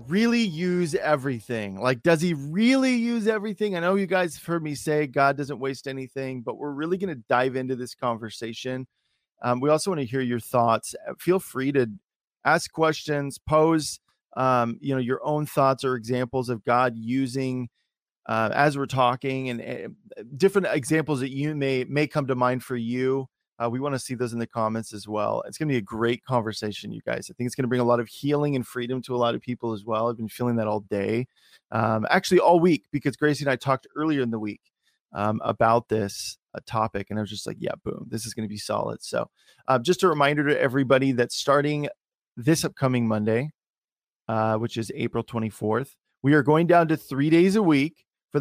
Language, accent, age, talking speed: English, American, 30-49, 215 wpm